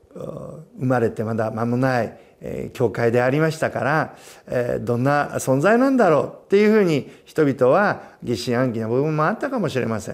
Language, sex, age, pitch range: Japanese, male, 50-69, 115-190 Hz